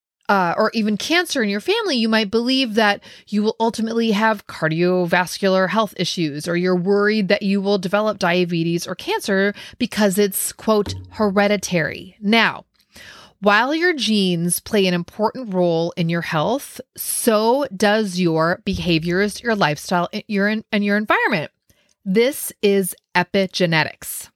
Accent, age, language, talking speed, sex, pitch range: American, 30-49, English, 135 wpm, female, 180-225 Hz